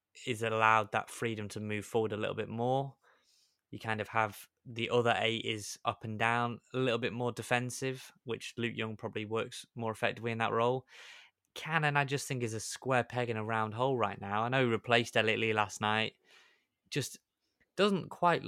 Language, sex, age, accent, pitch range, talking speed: English, male, 20-39, British, 110-125 Hz, 200 wpm